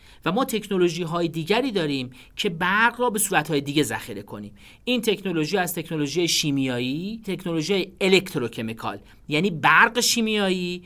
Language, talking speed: Persian, 140 wpm